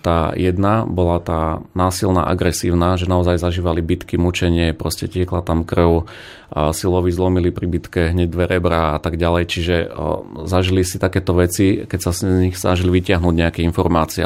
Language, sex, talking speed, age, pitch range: Slovak, male, 160 wpm, 30-49, 85-100 Hz